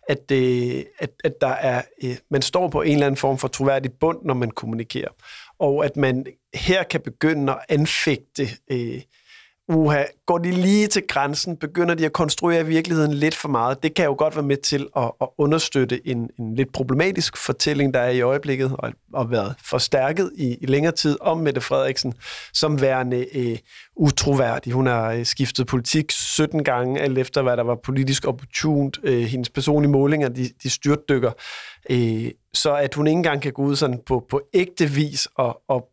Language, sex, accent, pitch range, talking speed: Danish, male, native, 125-150 Hz, 180 wpm